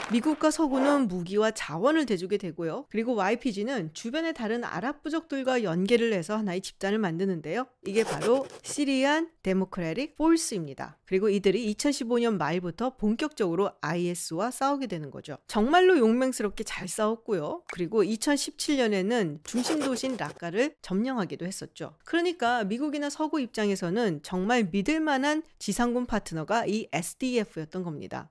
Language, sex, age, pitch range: Korean, female, 40-59, 190-280 Hz